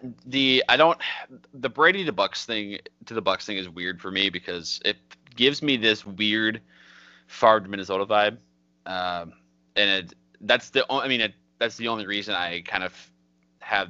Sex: male